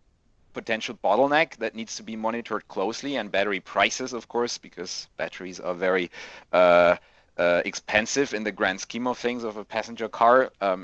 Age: 40-59